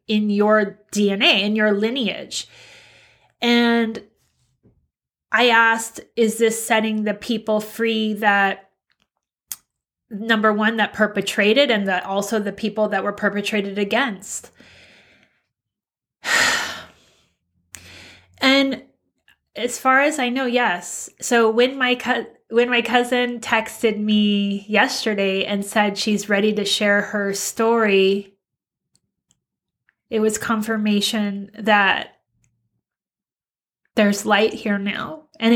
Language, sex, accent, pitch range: English, female, American, 200-230 Hz